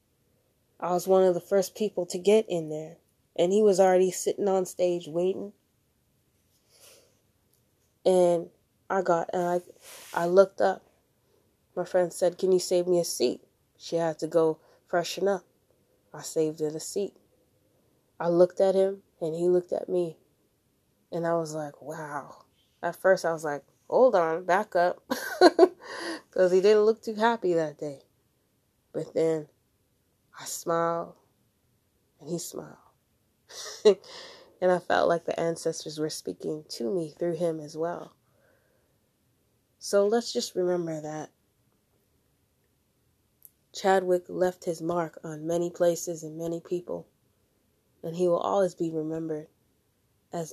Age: 20-39